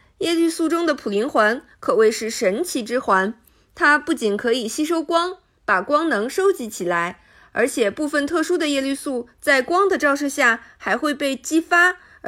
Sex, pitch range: female, 225-300 Hz